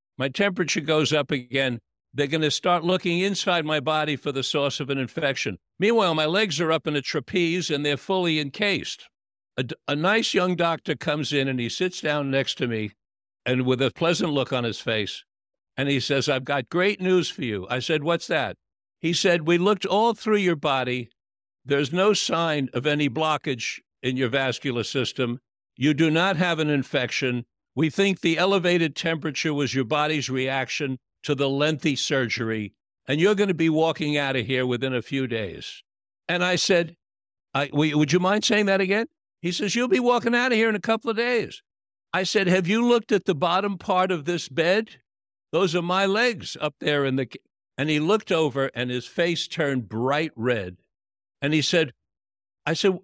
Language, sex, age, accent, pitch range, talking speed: English, male, 60-79, American, 135-180 Hz, 195 wpm